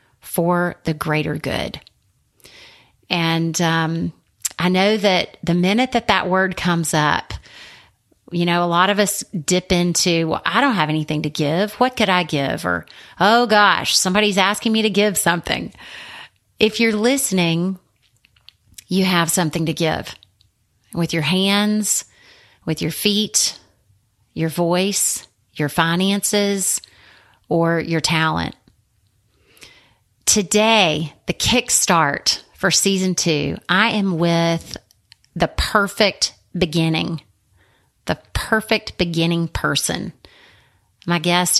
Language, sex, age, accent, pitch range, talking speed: English, female, 30-49, American, 155-205 Hz, 120 wpm